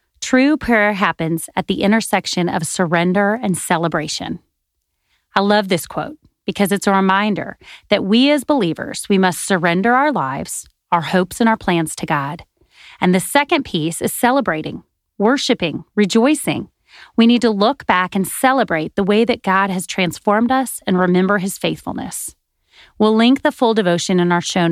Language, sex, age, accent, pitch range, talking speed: English, female, 30-49, American, 175-220 Hz, 165 wpm